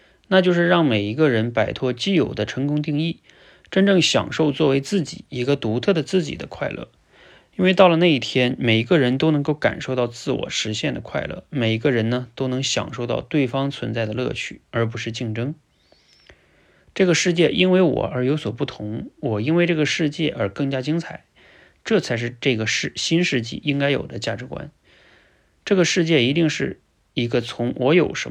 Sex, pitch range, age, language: male, 115-155 Hz, 20-39, Chinese